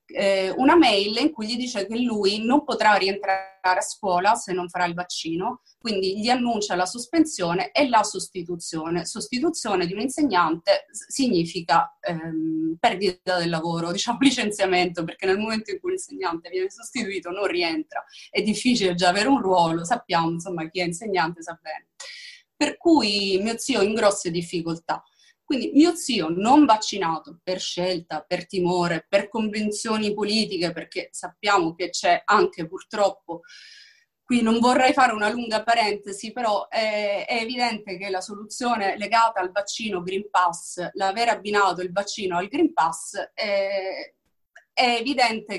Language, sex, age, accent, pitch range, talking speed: Italian, female, 30-49, native, 180-235 Hz, 150 wpm